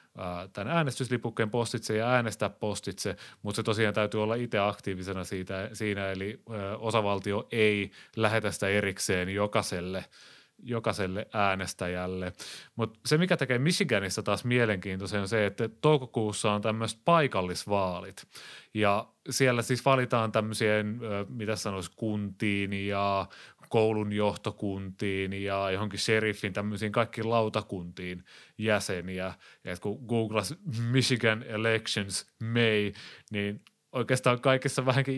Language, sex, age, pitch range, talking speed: Finnish, male, 30-49, 100-120 Hz, 115 wpm